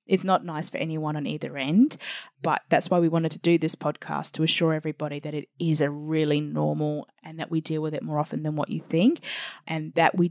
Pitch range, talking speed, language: 160-195 Hz, 240 wpm, English